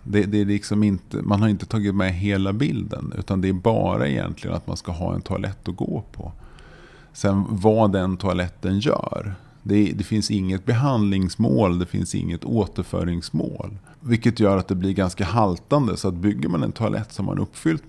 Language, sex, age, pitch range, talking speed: Swedish, male, 30-49, 90-110 Hz, 195 wpm